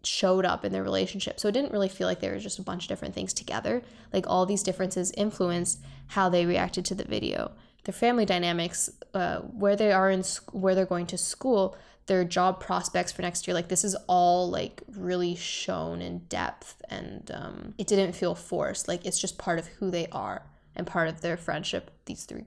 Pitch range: 180-205 Hz